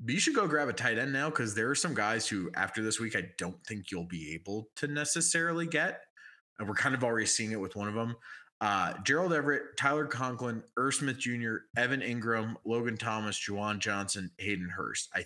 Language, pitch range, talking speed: English, 100-135 Hz, 215 wpm